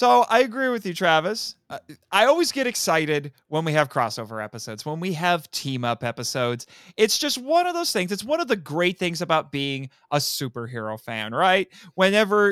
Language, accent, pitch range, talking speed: English, American, 135-205 Hz, 185 wpm